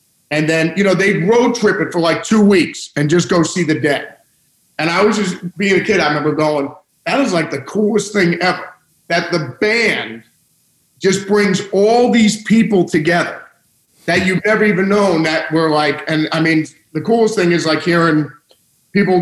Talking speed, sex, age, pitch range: 195 wpm, male, 50-69, 155-185 Hz